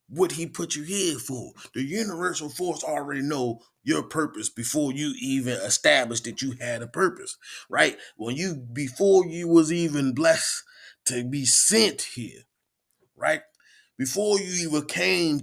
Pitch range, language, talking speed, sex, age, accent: 130-175 Hz, English, 150 wpm, male, 30-49, American